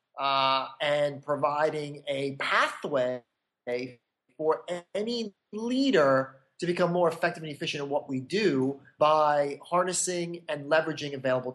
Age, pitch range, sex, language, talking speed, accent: 30-49, 145-170 Hz, male, English, 115 wpm, American